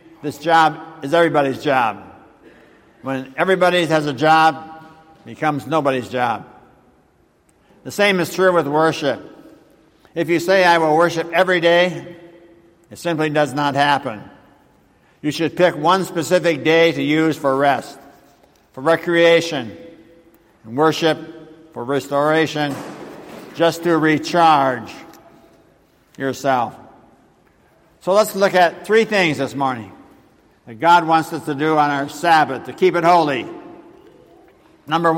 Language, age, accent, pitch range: English, 60-79, American, 150-170 Hz